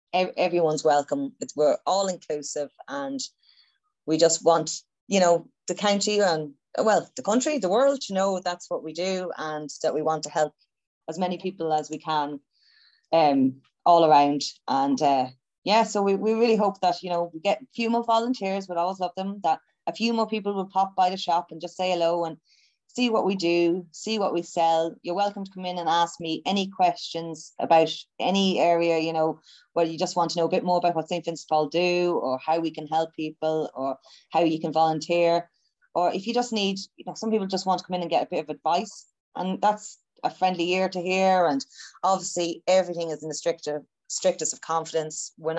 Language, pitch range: English, 155-190 Hz